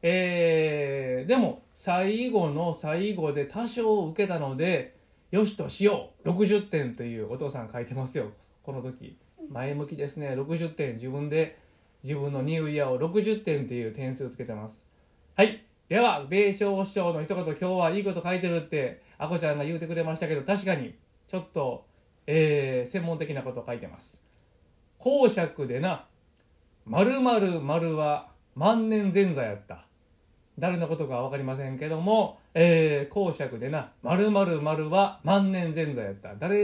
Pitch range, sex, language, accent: 135-200 Hz, male, Japanese, native